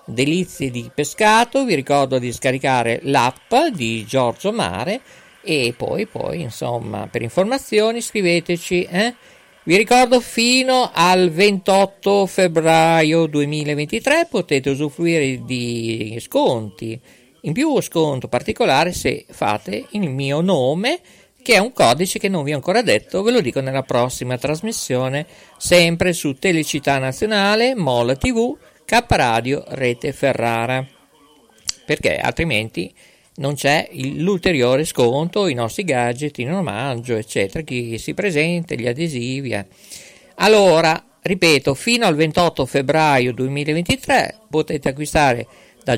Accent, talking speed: native, 125 wpm